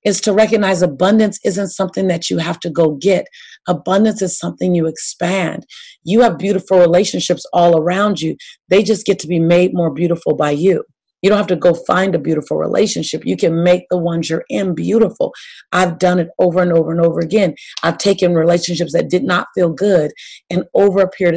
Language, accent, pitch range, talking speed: English, American, 170-195 Hz, 200 wpm